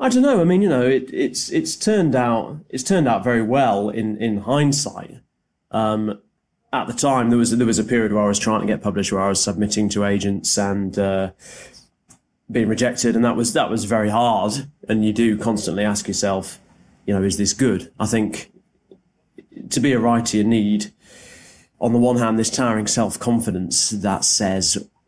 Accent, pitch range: British, 100-120 Hz